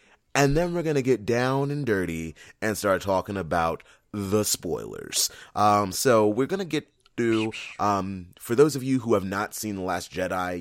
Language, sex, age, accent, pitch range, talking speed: English, male, 30-49, American, 90-130 Hz, 190 wpm